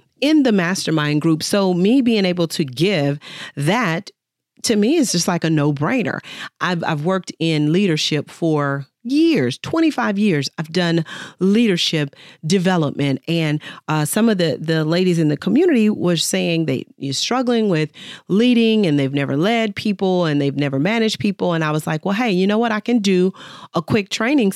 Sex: female